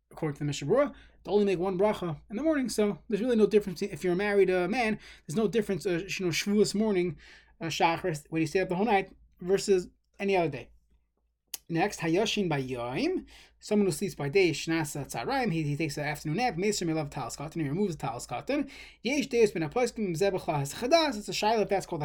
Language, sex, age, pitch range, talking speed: English, male, 20-39, 160-210 Hz, 180 wpm